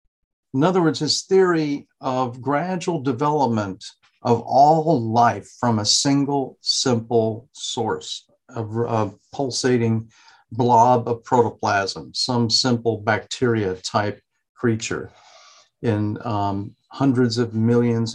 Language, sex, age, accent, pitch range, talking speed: English, male, 50-69, American, 110-135 Hz, 105 wpm